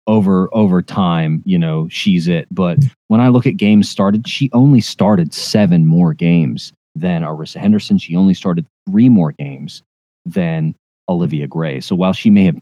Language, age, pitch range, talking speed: English, 30-49, 110-170 Hz, 175 wpm